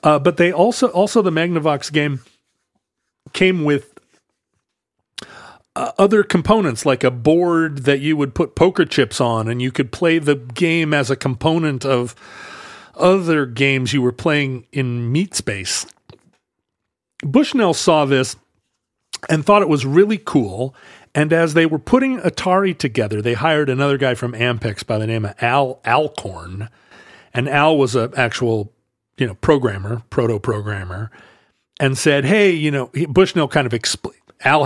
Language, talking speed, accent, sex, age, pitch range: English, 150 wpm, American, male, 40-59, 120-165 Hz